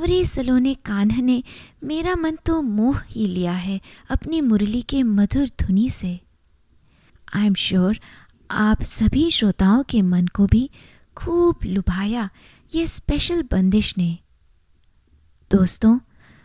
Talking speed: 125 wpm